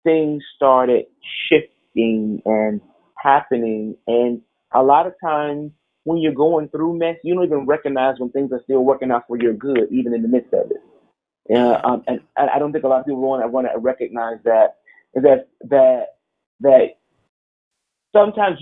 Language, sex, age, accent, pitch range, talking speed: English, male, 30-49, American, 125-155 Hz, 175 wpm